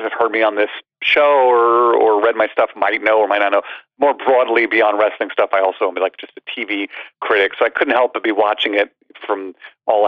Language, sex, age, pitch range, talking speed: English, male, 40-59, 95-115 Hz, 240 wpm